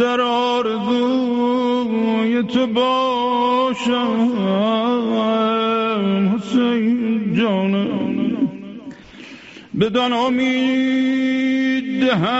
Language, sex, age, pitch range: Persian, male, 50-69, 225-255 Hz